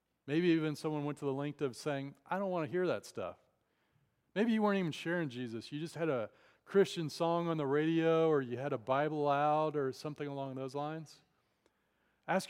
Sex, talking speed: male, 205 wpm